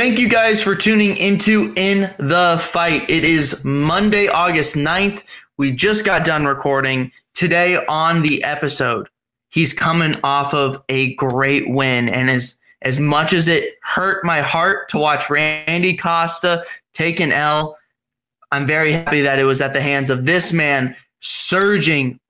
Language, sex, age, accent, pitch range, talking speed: English, male, 20-39, American, 140-175 Hz, 160 wpm